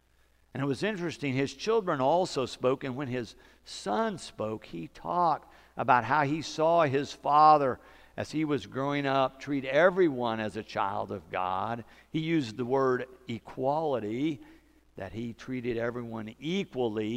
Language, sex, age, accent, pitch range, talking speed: English, male, 60-79, American, 105-135 Hz, 150 wpm